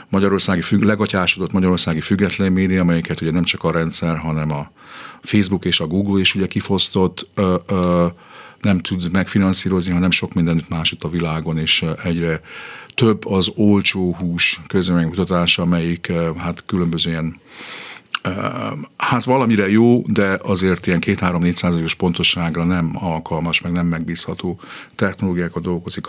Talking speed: 135 wpm